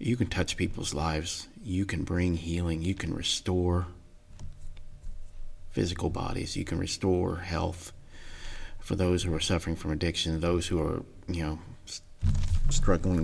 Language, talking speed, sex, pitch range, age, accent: English, 140 wpm, male, 85-95 Hz, 40-59, American